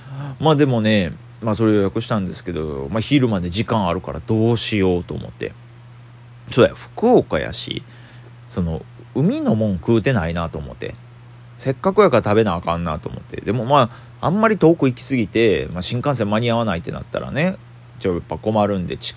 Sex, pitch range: male, 100-120 Hz